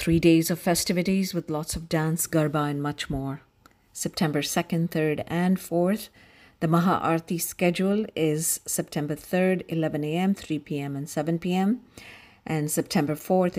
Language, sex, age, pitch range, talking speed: English, female, 50-69, 150-175 Hz, 150 wpm